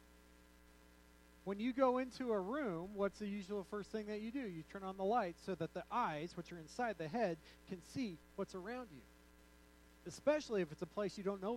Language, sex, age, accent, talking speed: English, male, 30-49, American, 215 wpm